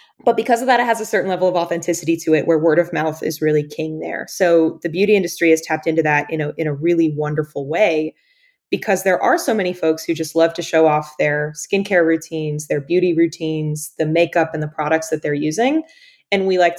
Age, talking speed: 20-39, 230 wpm